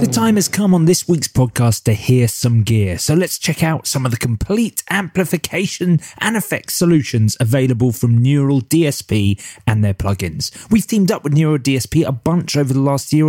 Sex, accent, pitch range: male, British, 115-175 Hz